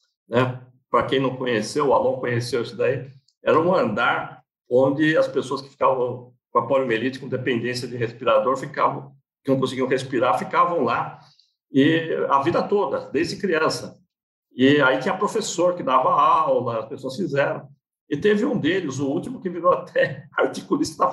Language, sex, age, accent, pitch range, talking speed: Portuguese, male, 60-79, Brazilian, 130-205 Hz, 170 wpm